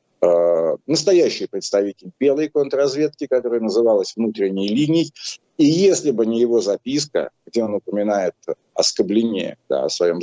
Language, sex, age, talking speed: Russian, male, 50-69, 130 wpm